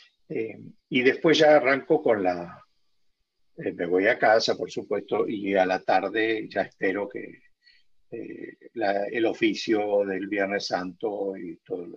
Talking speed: 150 wpm